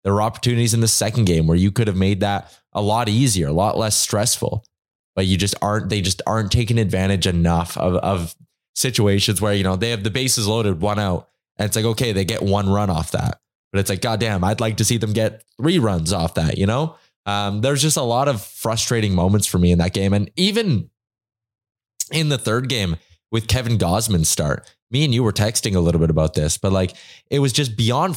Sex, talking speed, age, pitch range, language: male, 230 wpm, 20-39, 100-125 Hz, English